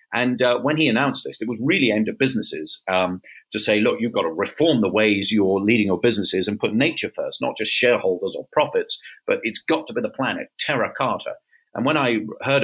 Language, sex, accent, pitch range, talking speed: English, male, British, 100-135 Hz, 230 wpm